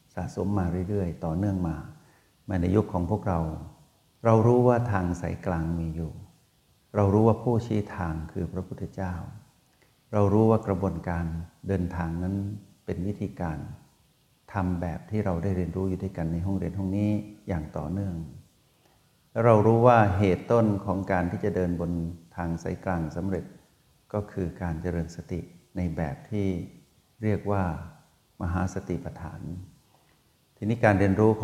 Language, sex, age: Thai, male, 60-79